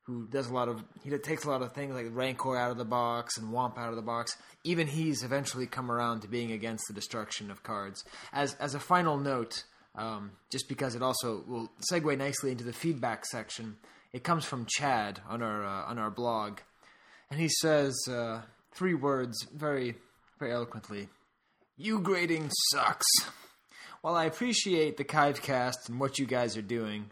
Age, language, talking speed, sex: 20-39, English, 190 wpm, male